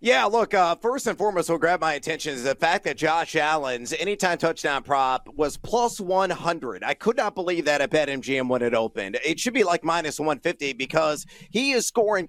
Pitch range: 155-200 Hz